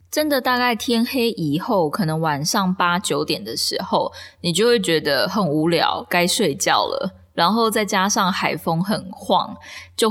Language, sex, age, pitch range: Chinese, female, 20-39, 160-205 Hz